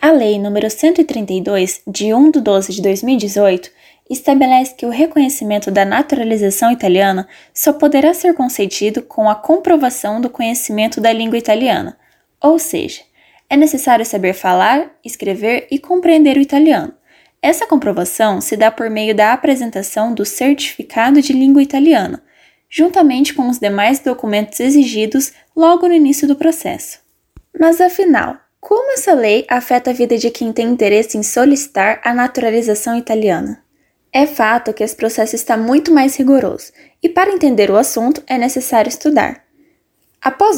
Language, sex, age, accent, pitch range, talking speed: Portuguese, female, 10-29, Brazilian, 220-300 Hz, 145 wpm